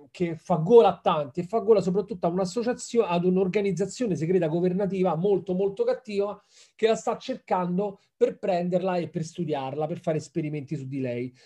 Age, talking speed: 30-49, 175 wpm